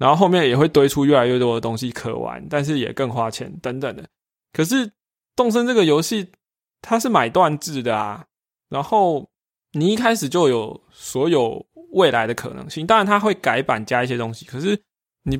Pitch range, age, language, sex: 125-180 Hz, 20-39, Chinese, male